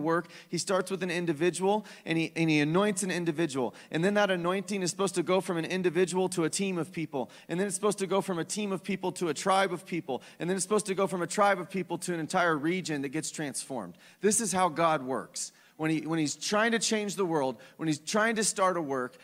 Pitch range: 150-185 Hz